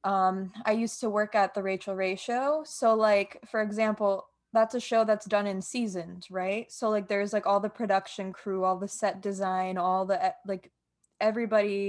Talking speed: 190 wpm